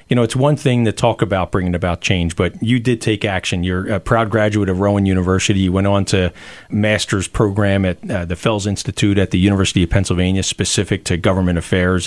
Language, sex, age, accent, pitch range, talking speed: English, male, 40-59, American, 90-110 Hz, 215 wpm